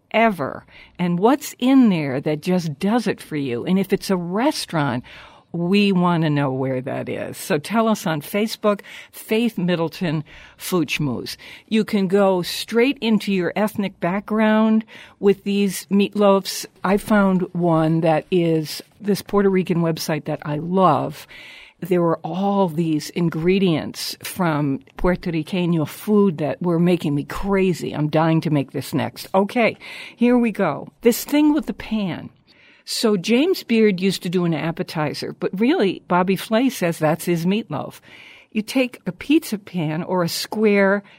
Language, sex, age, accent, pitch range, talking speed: English, female, 60-79, American, 165-215 Hz, 155 wpm